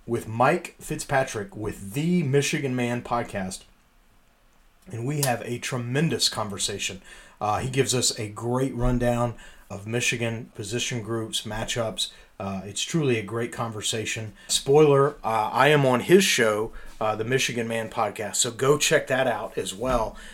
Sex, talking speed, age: male, 150 wpm, 30-49